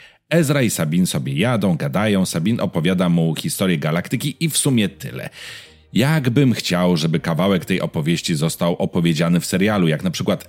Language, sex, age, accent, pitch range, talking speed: Polish, male, 30-49, native, 90-145 Hz, 160 wpm